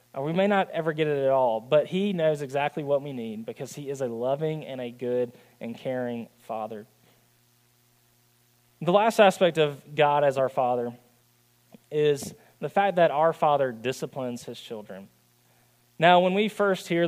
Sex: male